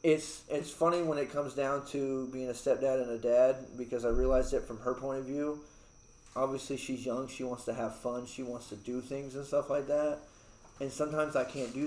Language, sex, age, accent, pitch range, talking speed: English, male, 20-39, American, 120-145 Hz, 225 wpm